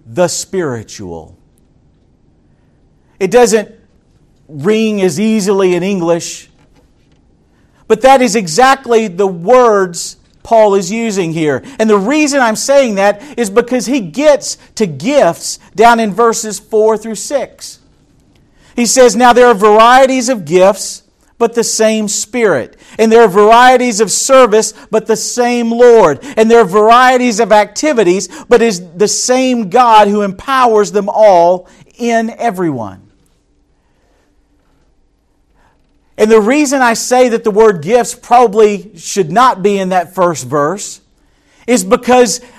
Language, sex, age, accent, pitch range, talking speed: English, male, 50-69, American, 195-245 Hz, 135 wpm